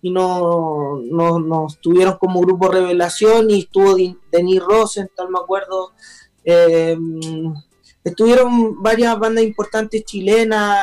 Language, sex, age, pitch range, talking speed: Spanish, male, 20-39, 170-205 Hz, 115 wpm